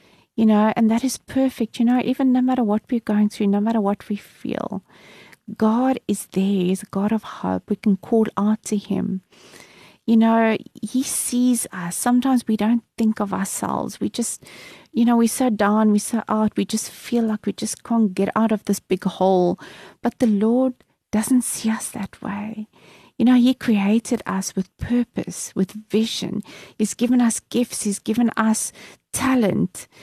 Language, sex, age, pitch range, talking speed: English, female, 30-49, 205-245 Hz, 185 wpm